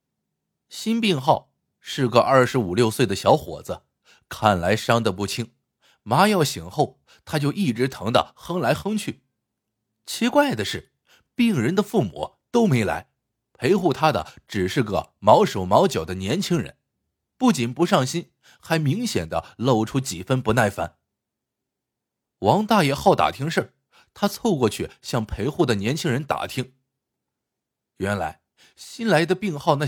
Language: Chinese